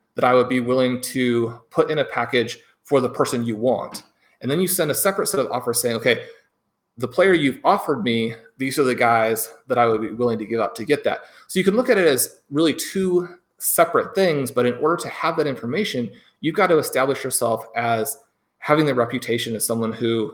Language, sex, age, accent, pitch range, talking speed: English, male, 30-49, American, 120-150 Hz, 225 wpm